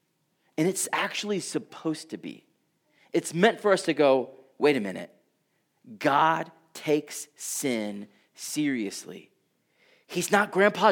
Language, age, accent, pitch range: English, 30-49, American, 135-190 Hz